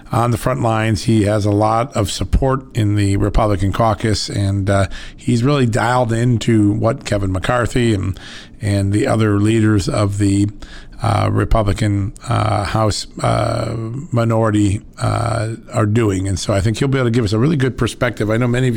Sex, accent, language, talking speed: male, American, English, 180 wpm